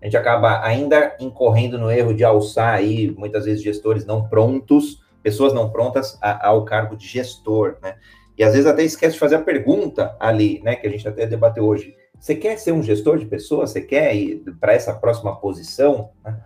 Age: 30-49